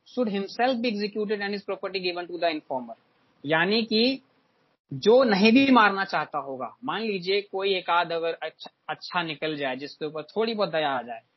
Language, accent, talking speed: Hindi, native, 150 wpm